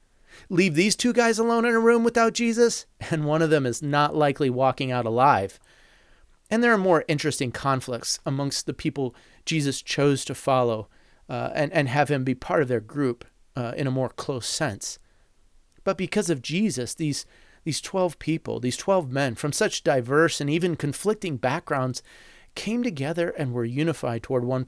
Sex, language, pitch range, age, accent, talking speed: male, English, 130-170 Hz, 30-49, American, 180 wpm